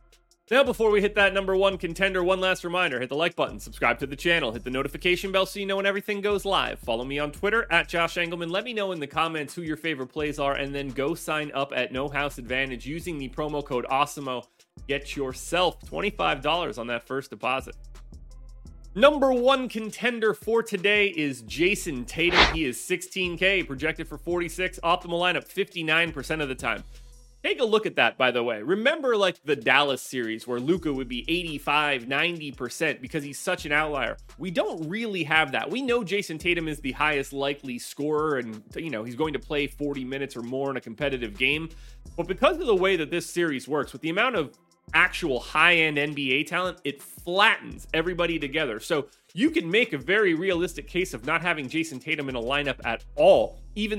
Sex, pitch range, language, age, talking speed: male, 140-185 Hz, English, 30-49, 200 wpm